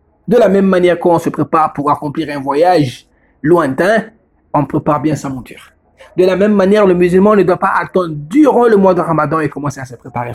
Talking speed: 215 wpm